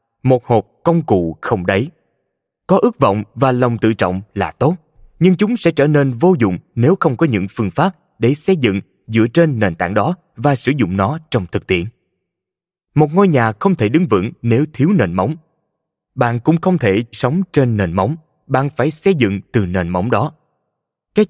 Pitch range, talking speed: 100-155 Hz, 200 wpm